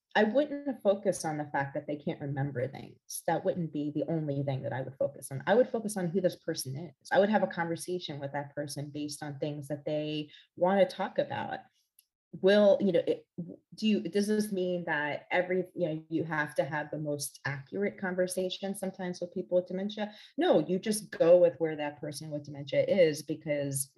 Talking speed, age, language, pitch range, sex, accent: 215 wpm, 30-49, English, 150-200 Hz, female, American